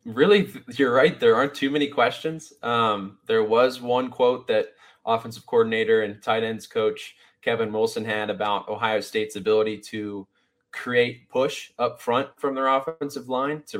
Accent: American